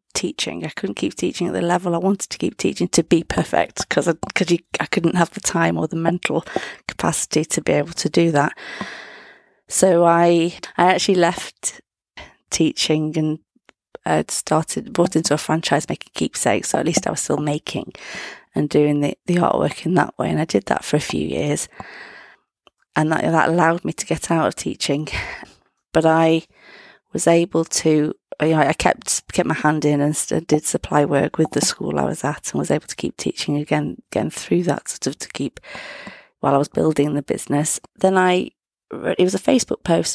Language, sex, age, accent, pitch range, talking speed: English, female, 30-49, British, 145-175 Hz, 195 wpm